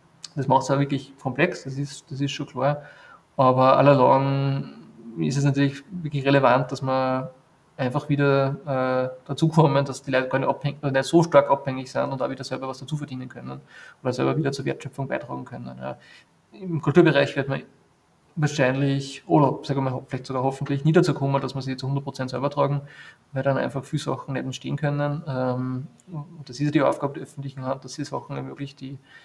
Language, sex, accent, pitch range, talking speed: German, male, German, 130-150 Hz, 200 wpm